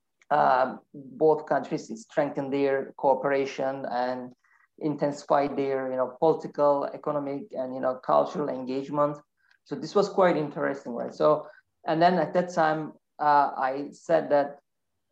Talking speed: 135 wpm